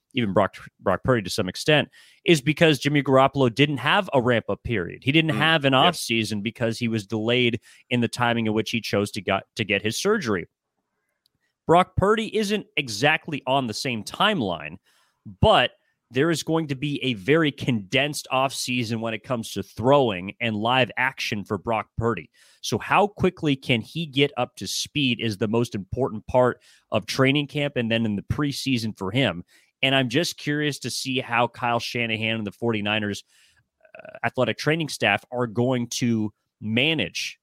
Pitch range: 115-145 Hz